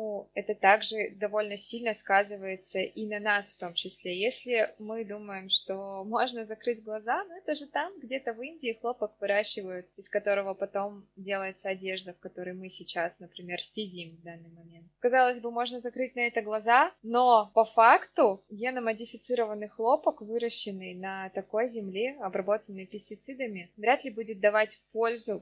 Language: Russian